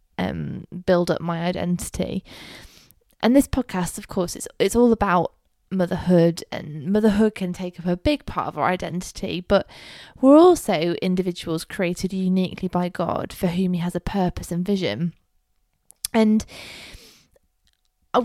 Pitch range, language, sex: 180-220 Hz, English, female